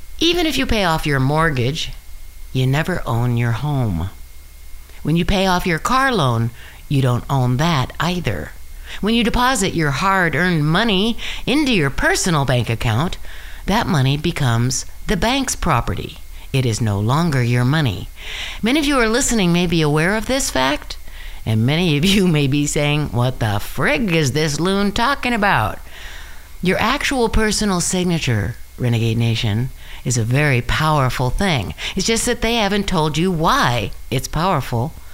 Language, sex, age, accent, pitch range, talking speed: English, female, 60-79, American, 120-185 Hz, 160 wpm